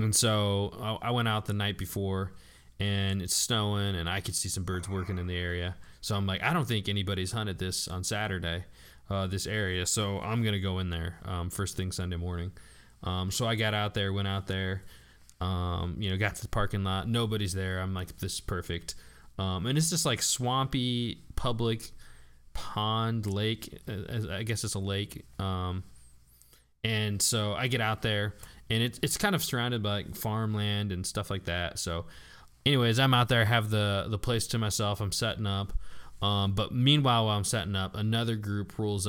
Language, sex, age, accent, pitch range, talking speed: English, male, 20-39, American, 90-110 Hz, 200 wpm